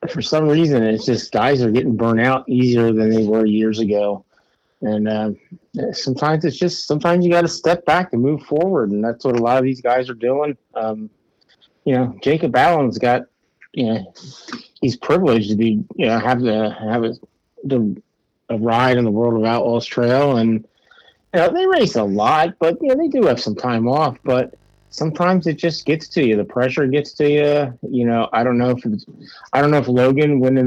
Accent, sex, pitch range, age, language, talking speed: American, male, 115-145 Hz, 30-49, English, 210 wpm